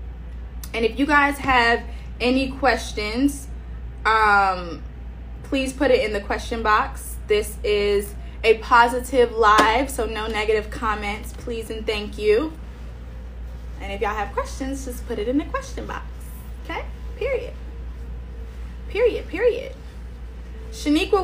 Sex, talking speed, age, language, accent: female, 125 wpm, 20-39, English, American